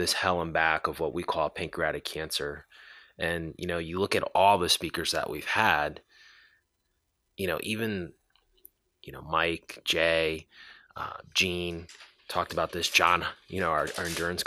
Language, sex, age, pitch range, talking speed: English, male, 20-39, 85-100 Hz, 165 wpm